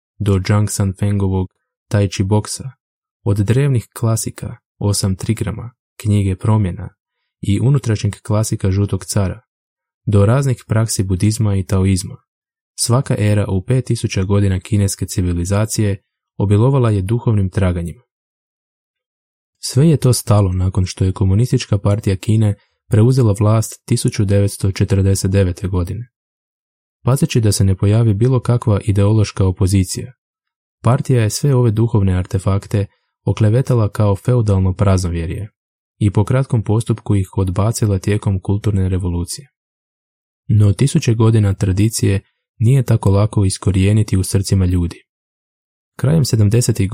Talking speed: 115 wpm